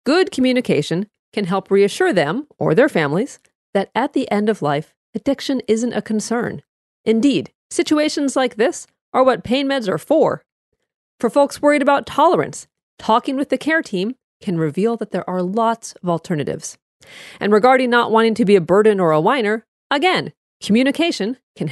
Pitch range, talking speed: 175-255 Hz, 170 wpm